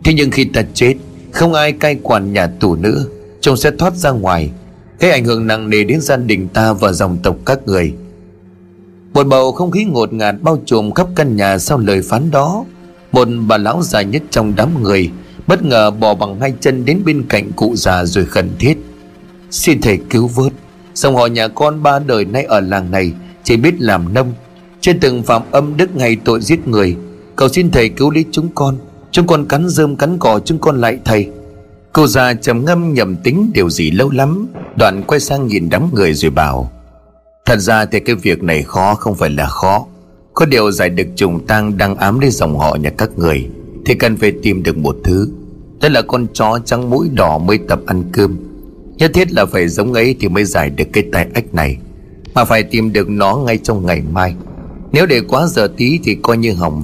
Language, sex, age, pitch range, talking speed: Vietnamese, male, 30-49, 95-140 Hz, 215 wpm